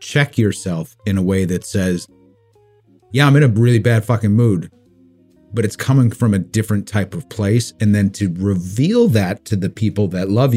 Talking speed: 195 wpm